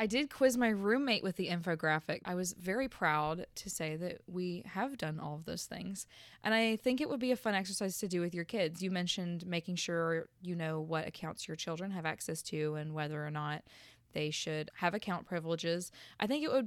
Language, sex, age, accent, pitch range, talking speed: English, female, 20-39, American, 165-210 Hz, 225 wpm